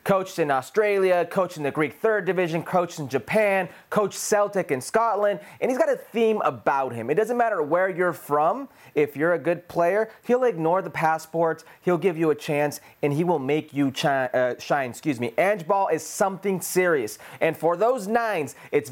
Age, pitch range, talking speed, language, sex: 30-49, 160-210 Hz, 195 wpm, English, male